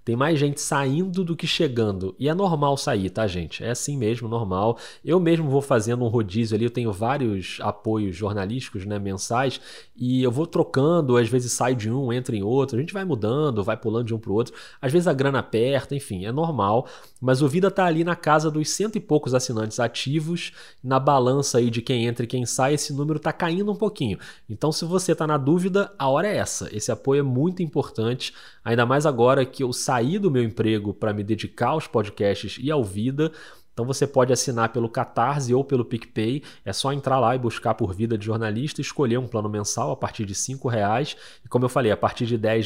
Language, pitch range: Portuguese, 110-145 Hz